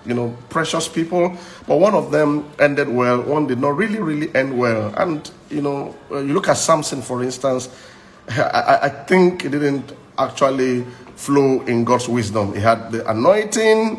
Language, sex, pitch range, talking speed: English, male, 125-150 Hz, 170 wpm